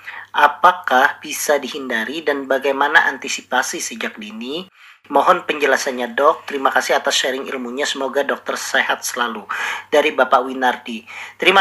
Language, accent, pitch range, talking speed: Indonesian, native, 145-195 Hz, 125 wpm